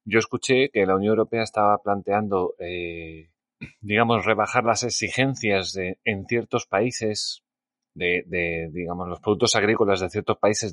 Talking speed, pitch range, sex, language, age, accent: 145 wpm, 95-120 Hz, male, Spanish, 30-49, Spanish